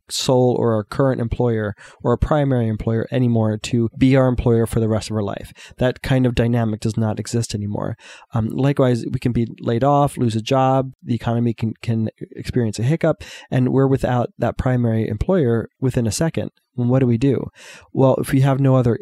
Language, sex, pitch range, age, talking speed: English, male, 115-130 Hz, 20-39, 205 wpm